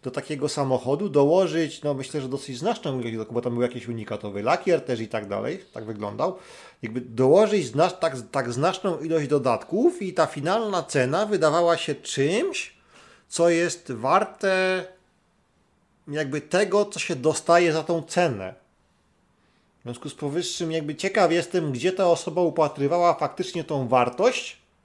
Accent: native